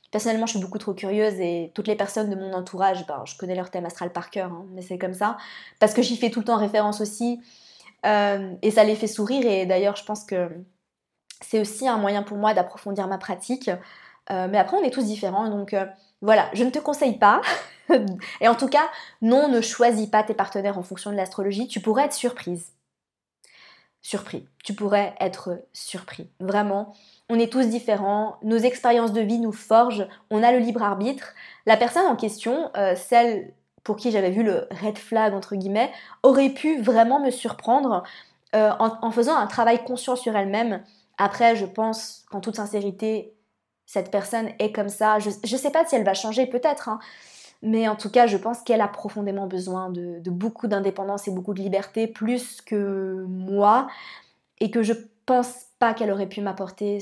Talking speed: 200 wpm